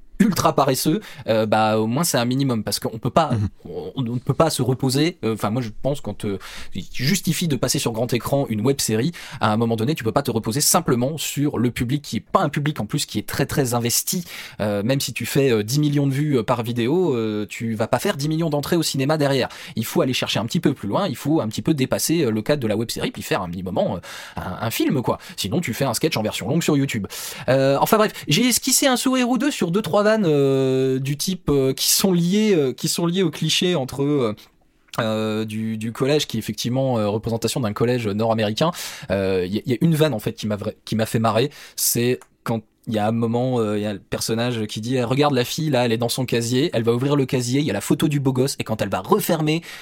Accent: French